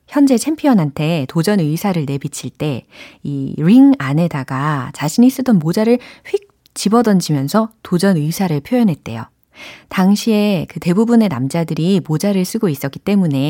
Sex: female